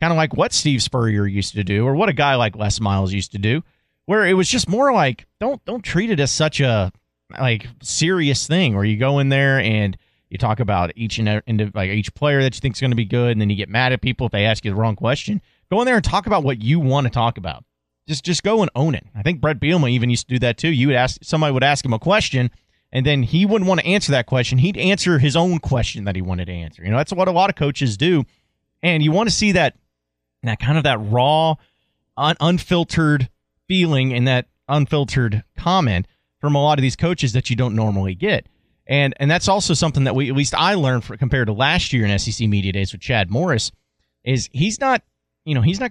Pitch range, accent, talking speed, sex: 110-155 Hz, American, 260 wpm, male